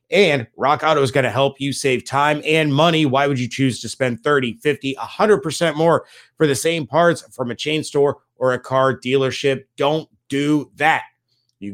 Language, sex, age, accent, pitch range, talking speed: English, male, 30-49, American, 115-145 Hz, 195 wpm